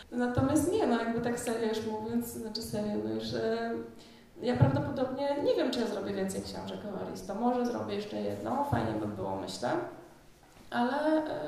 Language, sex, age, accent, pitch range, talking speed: Polish, female, 20-39, native, 190-240 Hz, 175 wpm